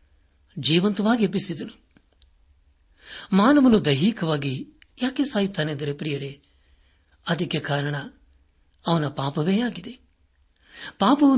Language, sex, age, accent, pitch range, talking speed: Kannada, male, 60-79, native, 140-195 Hz, 70 wpm